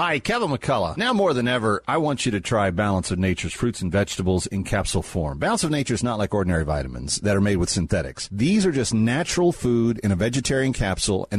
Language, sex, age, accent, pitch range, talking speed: English, male, 40-59, American, 100-135 Hz, 230 wpm